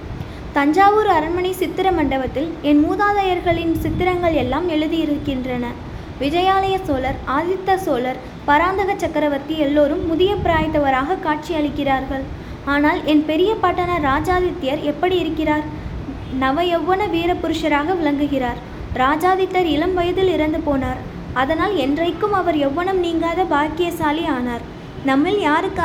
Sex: female